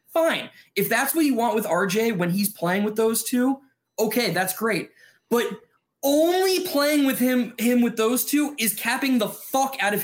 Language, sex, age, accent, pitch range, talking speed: English, male, 20-39, American, 195-250 Hz, 190 wpm